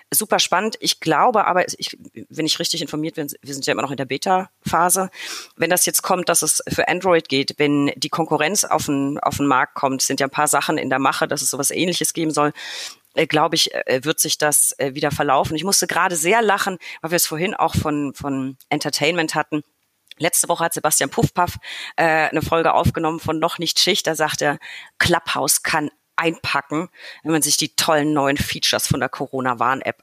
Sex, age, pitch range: female, 30-49, 150-175 Hz